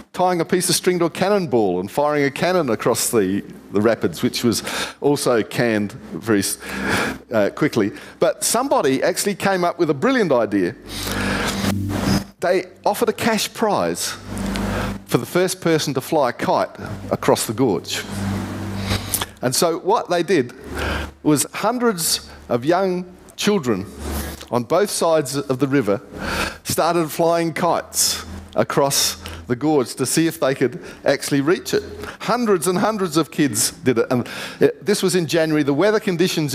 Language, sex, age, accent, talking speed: English, male, 50-69, Australian, 155 wpm